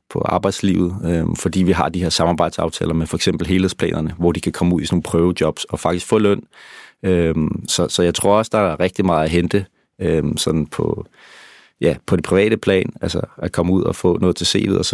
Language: Danish